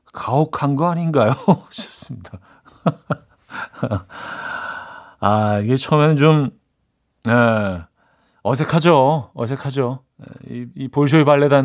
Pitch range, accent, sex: 120-165 Hz, native, male